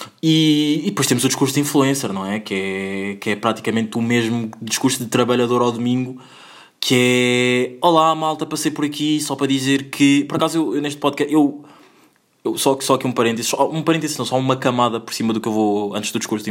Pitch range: 115-145 Hz